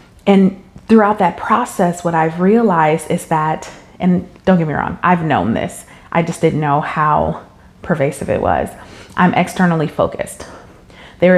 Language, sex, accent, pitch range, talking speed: English, female, American, 155-190 Hz, 155 wpm